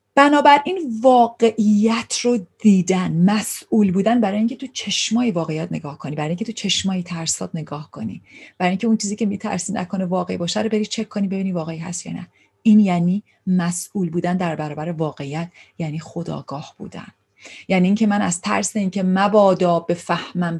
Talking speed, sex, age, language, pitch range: 170 wpm, female, 30-49, Persian, 165-220 Hz